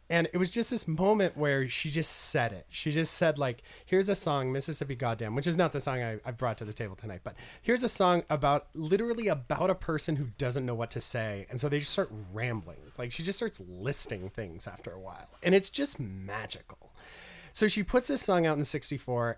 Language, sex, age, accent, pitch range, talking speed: English, male, 30-49, American, 120-175 Hz, 230 wpm